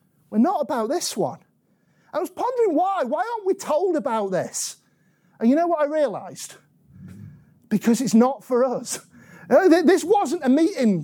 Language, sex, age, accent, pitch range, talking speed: English, male, 40-59, British, 225-305 Hz, 165 wpm